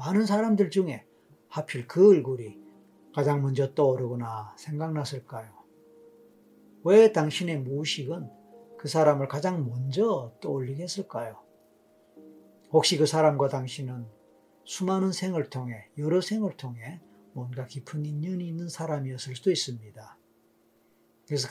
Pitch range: 115-155 Hz